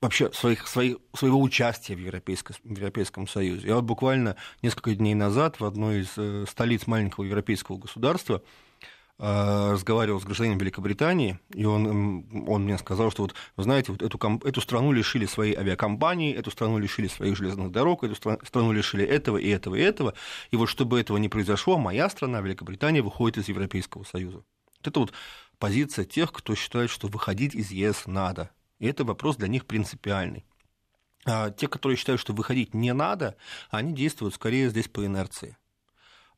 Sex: male